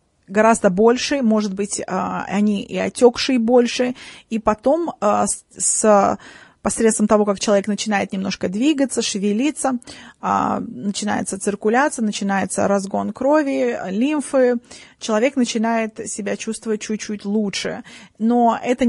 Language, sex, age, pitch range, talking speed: Russian, female, 20-39, 205-240 Hz, 100 wpm